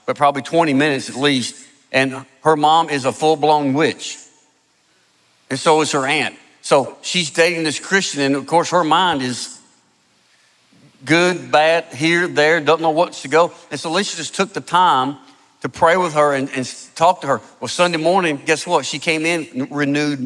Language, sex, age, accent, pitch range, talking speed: English, male, 50-69, American, 140-175 Hz, 185 wpm